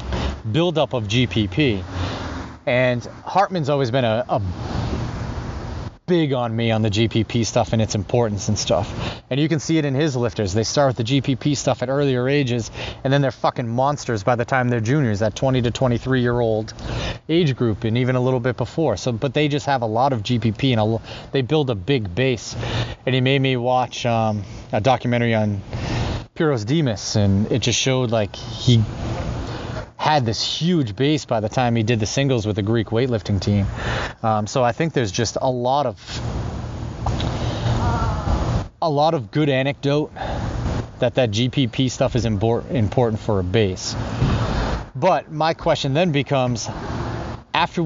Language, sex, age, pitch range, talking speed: English, male, 30-49, 110-135 Hz, 175 wpm